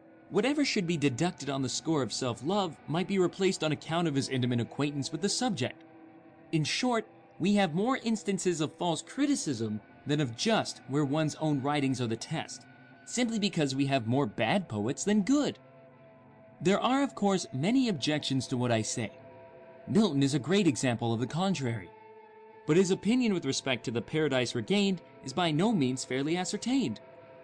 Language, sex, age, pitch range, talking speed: English, male, 30-49, 130-190 Hz, 180 wpm